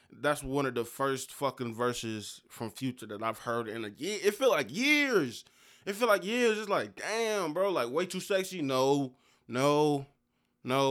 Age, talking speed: 20-39, 185 wpm